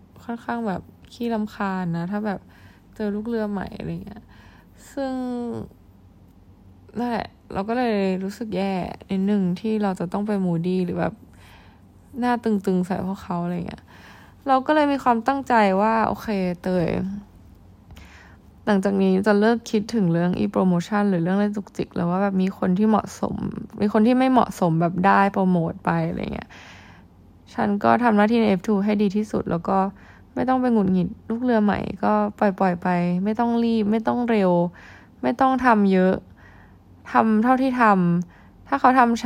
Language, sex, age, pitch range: Thai, female, 20-39, 180-225 Hz